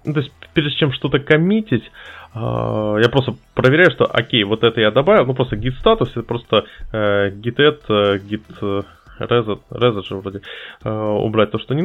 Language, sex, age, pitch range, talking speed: Russian, male, 20-39, 105-130 Hz, 160 wpm